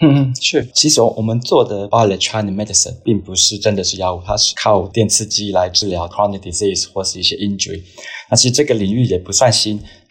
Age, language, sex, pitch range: 20-39, Chinese, male, 95-110 Hz